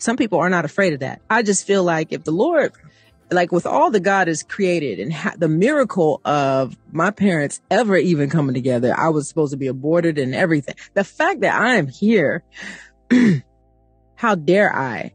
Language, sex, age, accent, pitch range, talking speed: English, female, 30-49, American, 140-195 Hz, 190 wpm